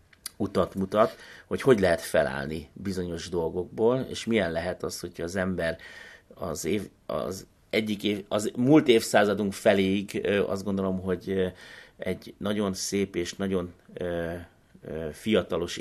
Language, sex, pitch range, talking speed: Hungarian, male, 90-115 Hz, 125 wpm